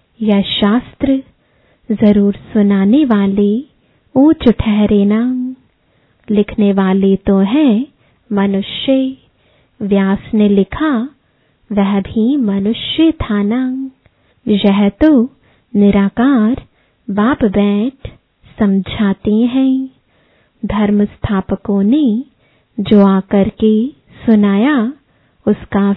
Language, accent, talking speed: English, Indian, 80 wpm